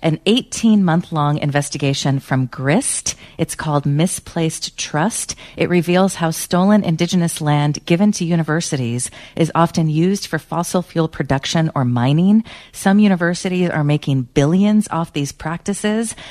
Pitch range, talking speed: 145-185 Hz, 130 wpm